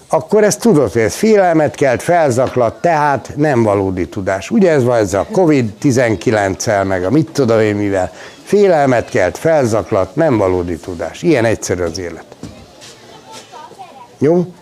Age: 60-79